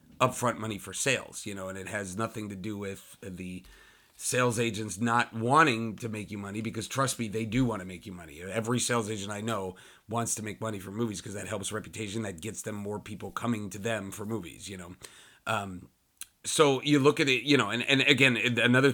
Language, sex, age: English, male, 30-49